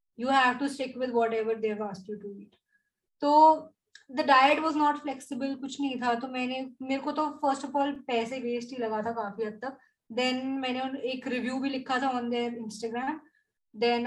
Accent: native